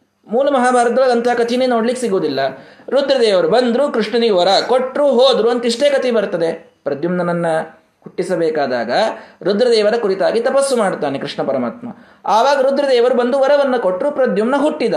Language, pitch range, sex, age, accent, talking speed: Kannada, 175-245 Hz, male, 20-39, native, 120 wpm